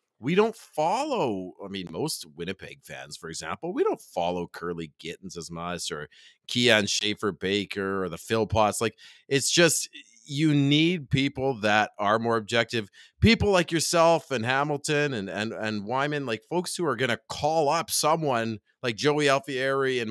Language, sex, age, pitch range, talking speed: English, male, 30-49, 105-145 Hz, 170 wpm